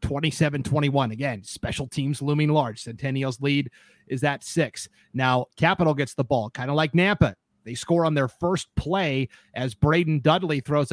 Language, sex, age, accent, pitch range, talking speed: English, male, 30-49, American, 125-155 Hz, 165 wpm